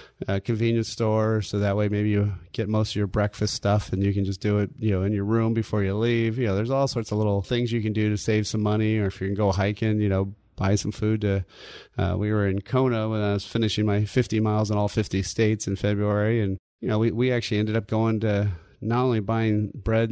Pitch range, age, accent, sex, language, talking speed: 105-115 Hz, 30-49, American, male, English, 260 wpm